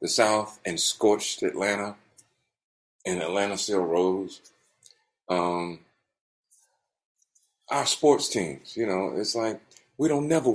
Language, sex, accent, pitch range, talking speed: English, male, American, 95-125 Hz, 115 wpm